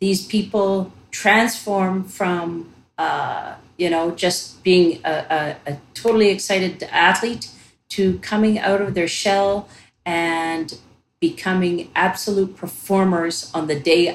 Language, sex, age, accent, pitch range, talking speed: English, female, 40-59, American, 155-190 Hz, 115 wpm